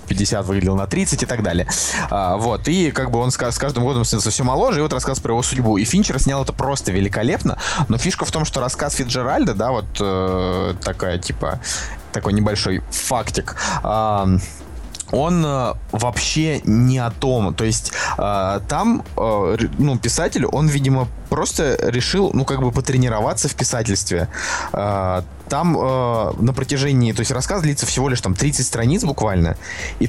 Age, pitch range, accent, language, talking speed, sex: 20-39, 105-135 Hz, native, Russian, 170 wpm, male